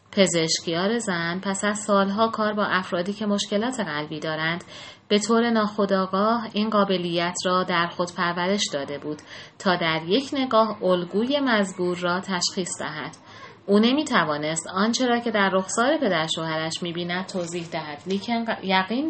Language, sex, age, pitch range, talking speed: Persian, female, 30-49, 165-215 Hz, 150 wpm